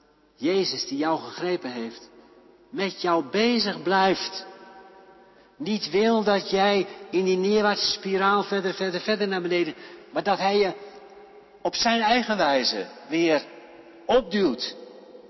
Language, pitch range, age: Dutch, 140-215 Hz, 60-79